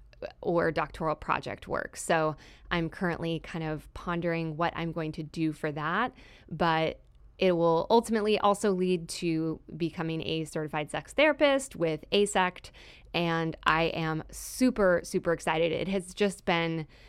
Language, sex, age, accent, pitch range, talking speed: English, female, 20-39, American, 160-185 Hz, 145 wpm